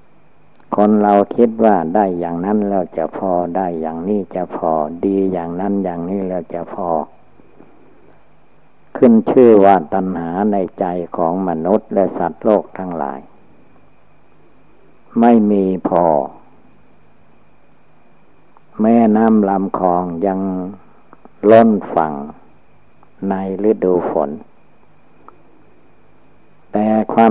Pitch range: 90-105 Hz